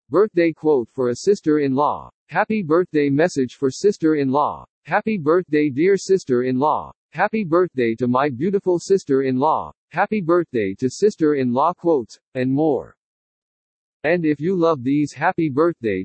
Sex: male